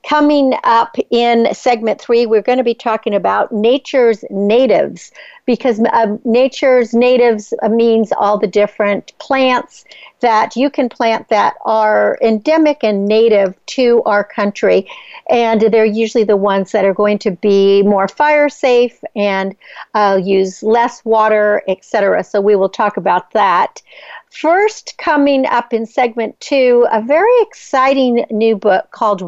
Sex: female